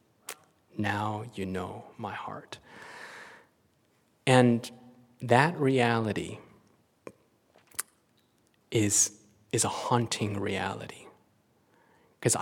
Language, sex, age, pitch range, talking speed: English, male, 30-49, 105-125 Hz, 70 wpm